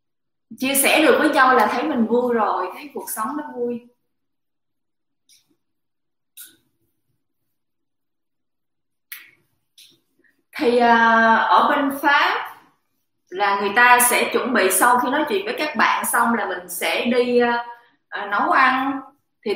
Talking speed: 125 wpm